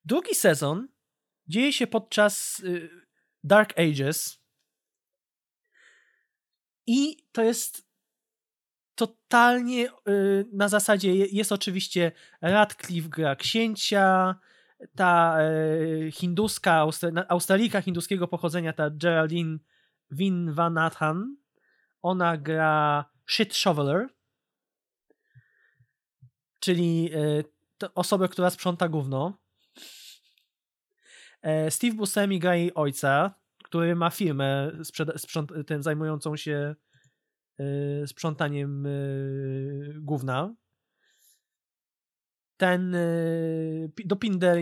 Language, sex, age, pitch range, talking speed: Polish, male, 20-39, 150-200 Hz, 80 wpm